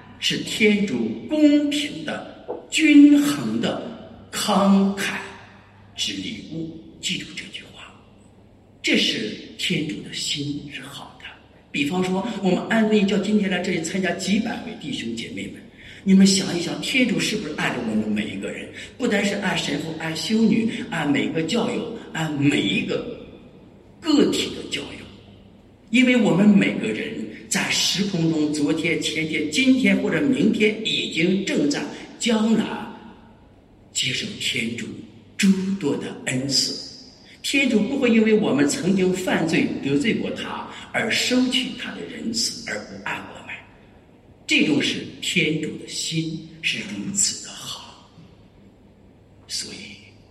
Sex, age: male, 50-69